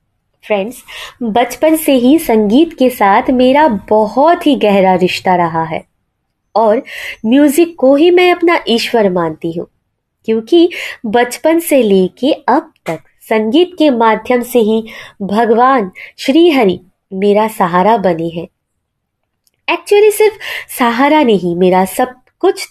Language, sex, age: Hindi, female, 20-39